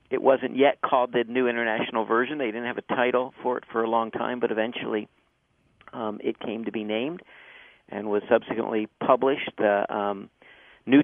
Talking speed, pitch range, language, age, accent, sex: 185 wpm, 105-120 Hz, English, 50-69, American, male